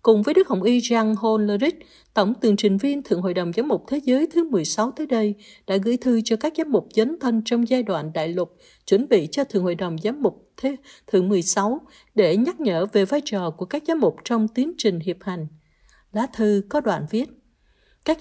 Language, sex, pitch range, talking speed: Vietnamese, female, 195-275 Hz, 220 wpm